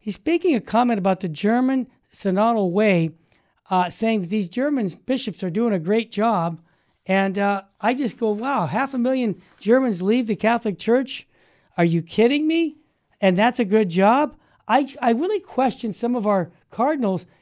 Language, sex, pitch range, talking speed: English, male, 190-245 Hz, 175 wpm